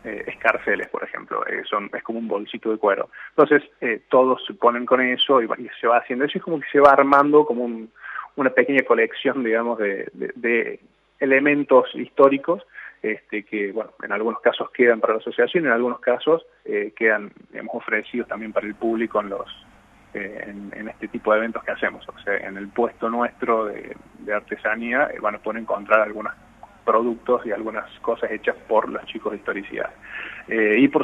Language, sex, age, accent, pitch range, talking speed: Spanish, male, 20-39, Argentinian, 105-130 Hz, 195 wpm